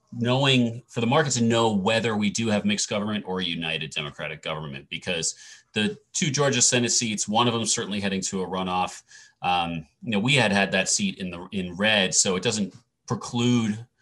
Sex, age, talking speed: male, 30-49, 195 wpm